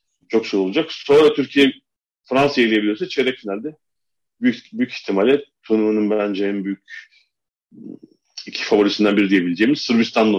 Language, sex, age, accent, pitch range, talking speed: Turkish, male, 40-59, native, 105-125 Hz, 120 wpm